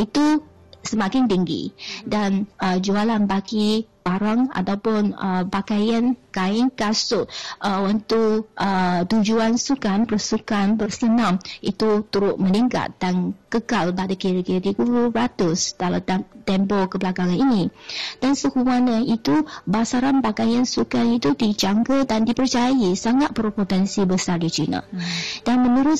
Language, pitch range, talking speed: Malay, 195-235 Hz, 115 wpm